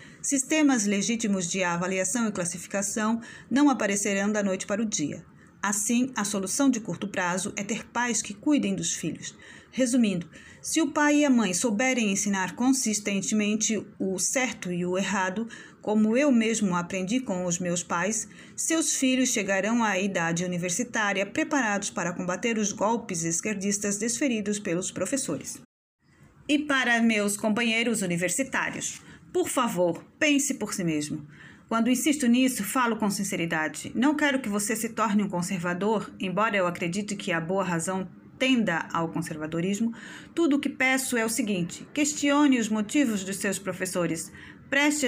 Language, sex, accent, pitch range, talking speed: Portuguese, female, Brazilian, 185-245 Hz, 150 wpm